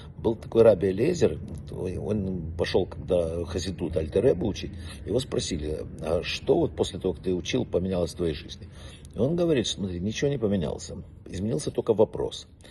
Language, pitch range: Russian, 85-110 Hz